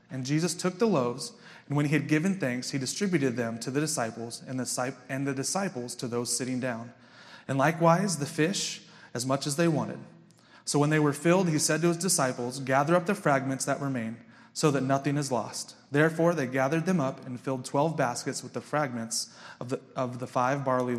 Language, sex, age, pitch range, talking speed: English, male, 30-49, 135-165 Hz, 205 wpm